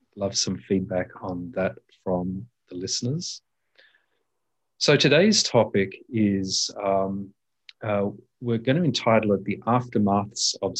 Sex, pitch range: male, 95-115 Hz